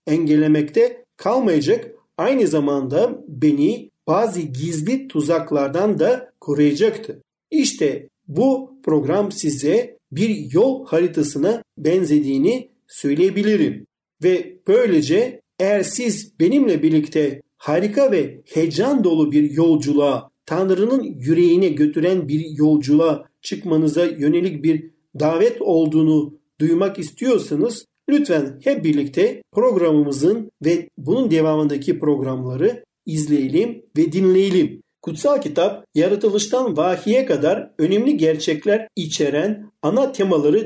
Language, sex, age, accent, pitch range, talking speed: Turkish, male, 50-69, native, 155-235 Hz, 95 wpm